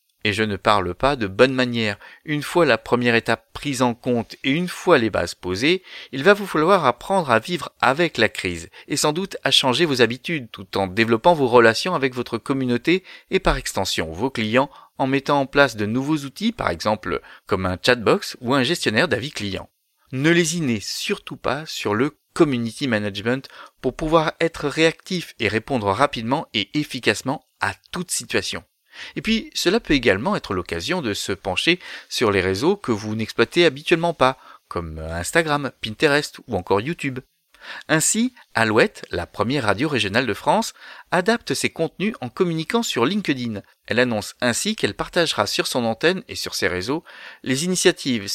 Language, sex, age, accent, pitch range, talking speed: French, male, 30-49, French, 115-170 Hz, 175 wpm